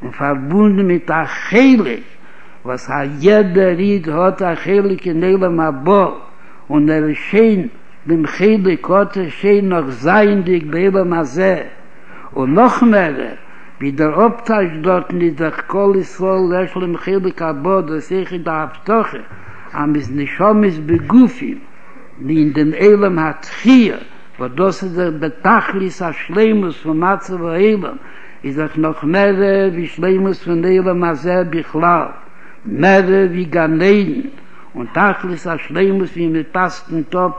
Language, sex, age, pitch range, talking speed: Hebrew, male, 60-79, 160-195 Hz, 100 wpm